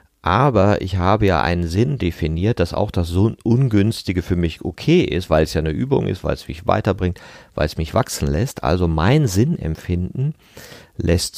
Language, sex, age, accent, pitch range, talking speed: German, male, 40-59, German, 80-105 Hz, 185 wpm